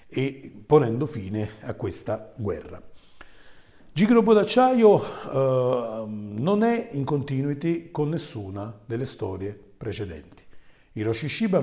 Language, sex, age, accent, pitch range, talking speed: Italian, male, 40-59, native, 105-135 Hz, 100 wpm